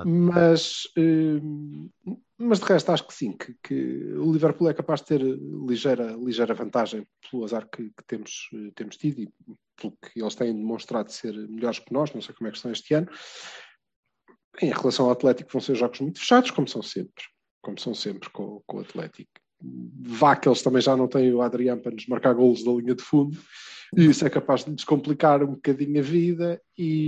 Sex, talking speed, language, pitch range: male, 200 wpm, Portuguese, 115-155 Hz